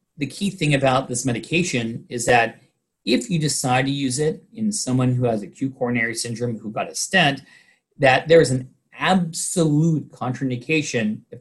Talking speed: 170 wpm